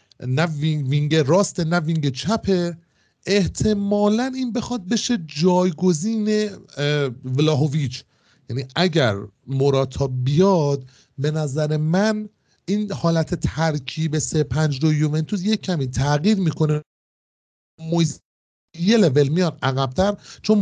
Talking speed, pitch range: 100 wpm, 140-190 Hz